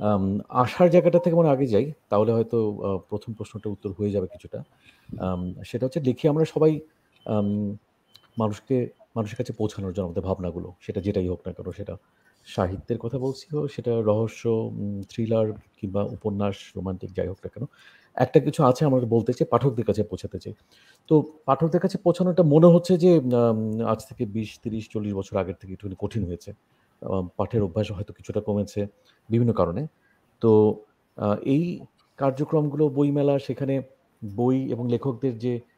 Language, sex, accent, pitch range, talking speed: Bengali, male, native, 105-130 Hz, 85 wpm